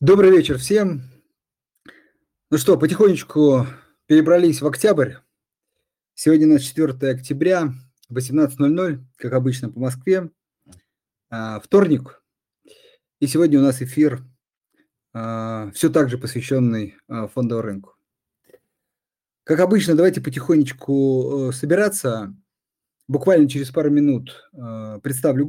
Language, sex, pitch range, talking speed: Russian, male, 125-155 Hz, 95 wpm